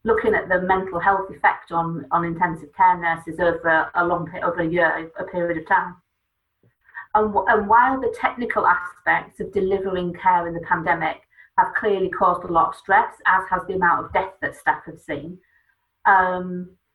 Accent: British